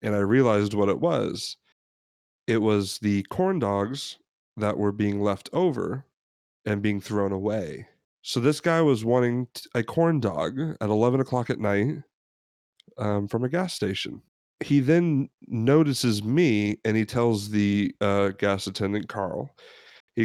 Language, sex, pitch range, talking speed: English, male, 100-130 Hz, 150 wpm